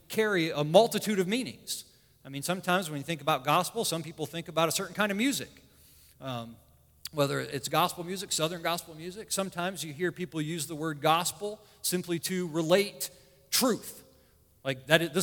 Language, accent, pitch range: English, American, 145-190 Hz